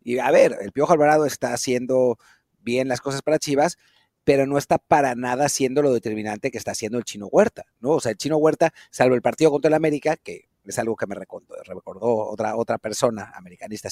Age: 40-59